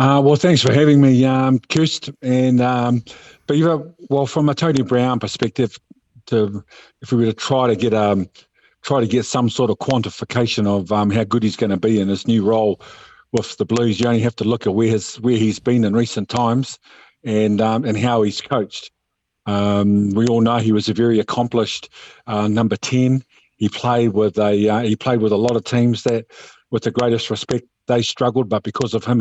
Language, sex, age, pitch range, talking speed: English, male, 50-69, 110-125 Hz, 215 wpm